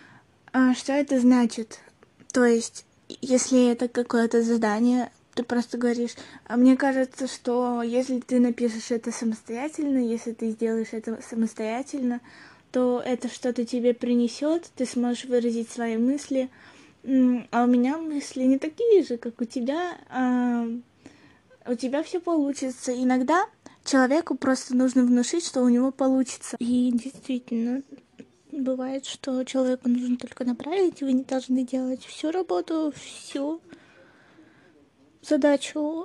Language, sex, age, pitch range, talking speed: Russian, female, 20-39, 245-280 Hz, 125 wpm